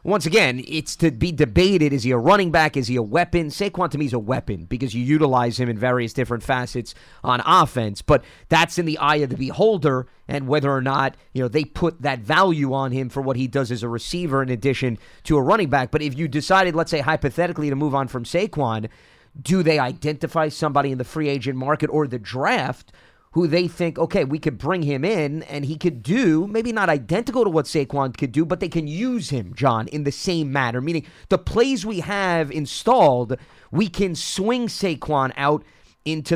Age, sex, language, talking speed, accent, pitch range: 30-49, male, English, 215 wpm, American, 135-175 Hz